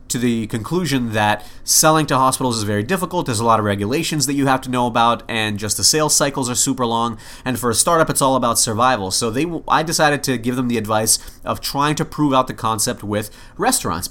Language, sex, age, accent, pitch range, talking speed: English, male, 30-49, American, 110-135 Hz, 235 wpm